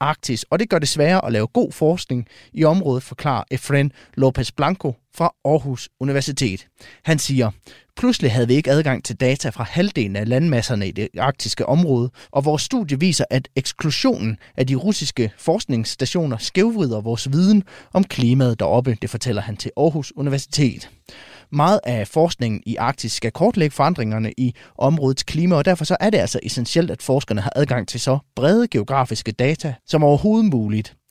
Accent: native